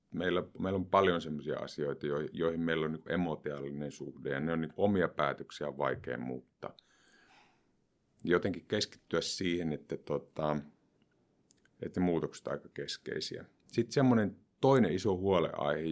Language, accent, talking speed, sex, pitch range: Finnish, native, 130 wpm, male, 80-95 Hz